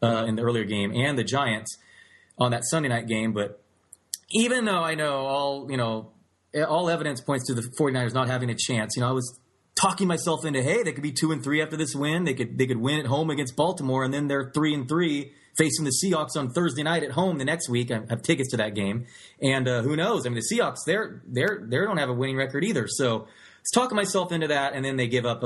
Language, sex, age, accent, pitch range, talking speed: English, male, 30-49, American, 115-150 Hz, 255 wpm